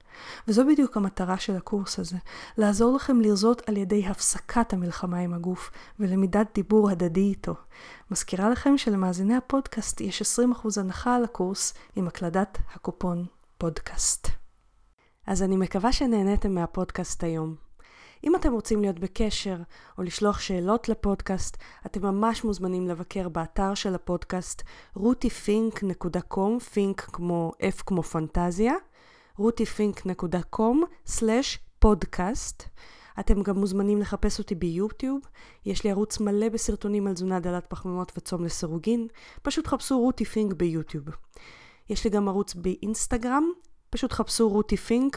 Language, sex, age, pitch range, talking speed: Hebrew, female, 20-39, 180-225 Hz, 120 wpm